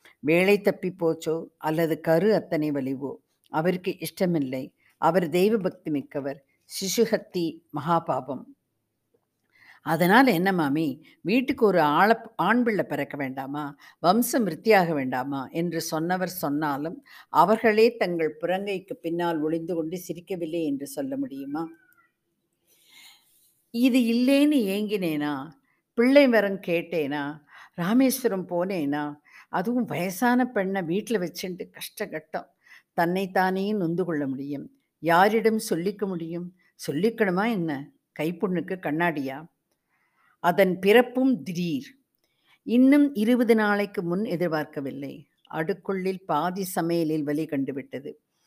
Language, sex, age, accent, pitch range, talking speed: Tamil, female, 50-69, native, 155-205 Hz, 95 wpm